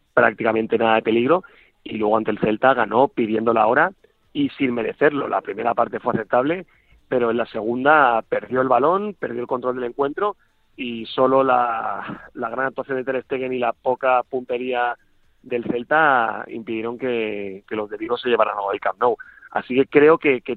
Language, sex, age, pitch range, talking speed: Spanish, male, 30-49, 115-145 Hz, 185 wpm